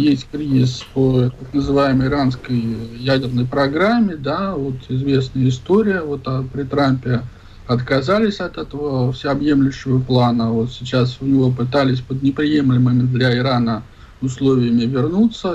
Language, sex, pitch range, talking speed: Russian, male, 125-145 Hz, 120 wpm